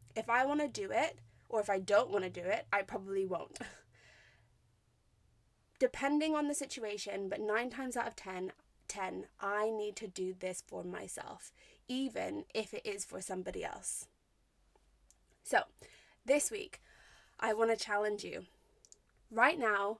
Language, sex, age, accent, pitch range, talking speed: English, female, 20-39, British, 200-270 Hz, 155 wpm